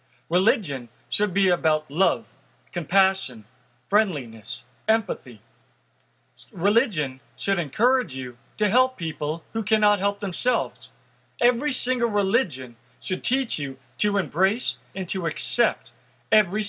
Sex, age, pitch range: male, 40-59, 160-210 Hz